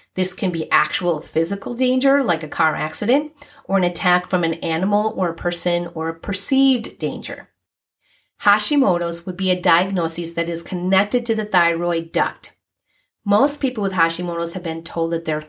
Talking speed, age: 170 wpm, 30-49